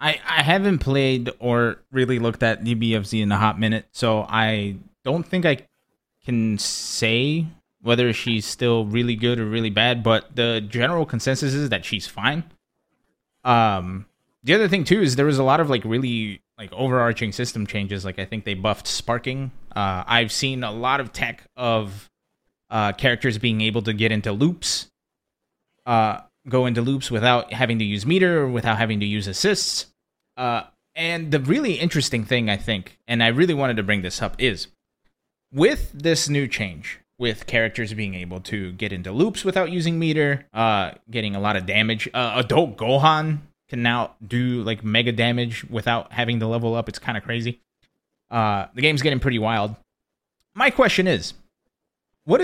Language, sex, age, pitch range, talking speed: English, male, 20-39, 110-140 Hz, 180 wpm